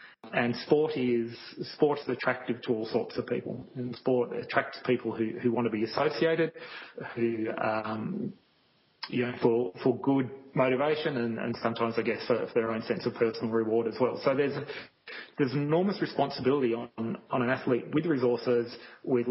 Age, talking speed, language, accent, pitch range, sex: 30-49, 170 wpm, English, Australian, 115-130 Hz, male